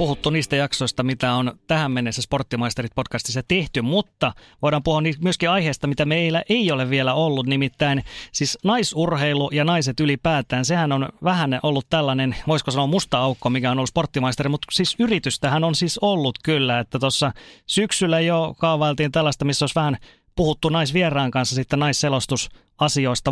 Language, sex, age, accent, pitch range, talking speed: Finnish, male, 30-49, native, 130-165 Hz, 155 wpm